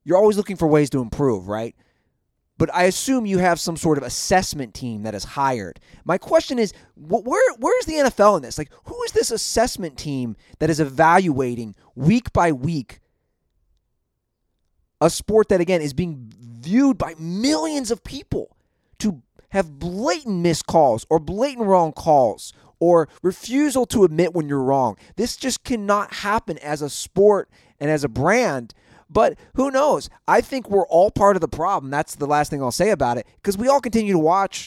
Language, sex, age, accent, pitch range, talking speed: English, male, 30-49, American, 140-210 Hz, 185 wpm